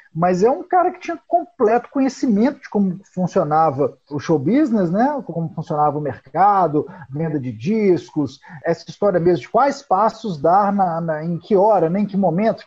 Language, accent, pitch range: Portuguese, Brazilian, 165-240 Hz